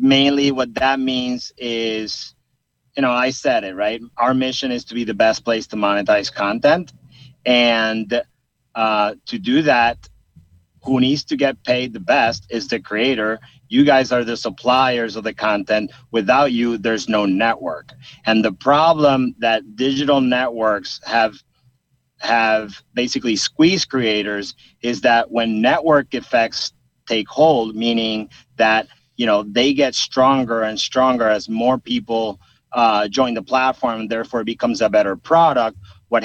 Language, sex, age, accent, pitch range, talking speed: English, male, 40-59, American, 115-135 Hz, 150 wpm